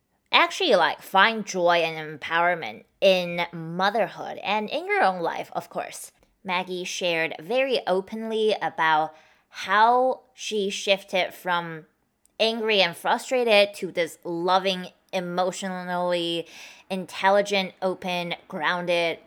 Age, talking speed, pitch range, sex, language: 20-39, 105 wpm, 170-215 Hz, female, English